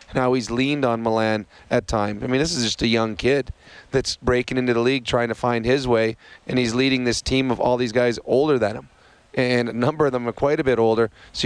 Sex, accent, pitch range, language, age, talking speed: male, American, 120-130 Hz, English, 30-49, 250 wpm